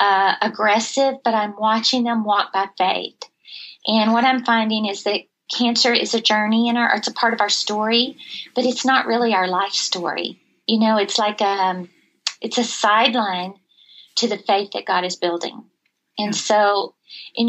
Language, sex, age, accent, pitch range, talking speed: English, female, 40-59, American, 195-235 Hz, 180 wpm